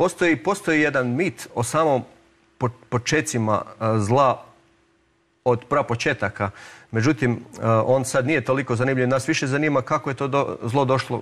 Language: Croatian